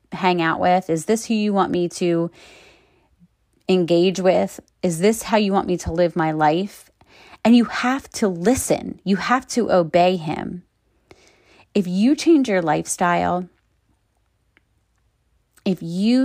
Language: English